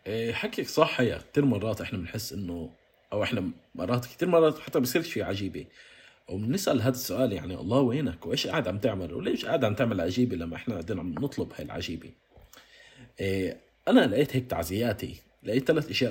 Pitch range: 95-135 Hz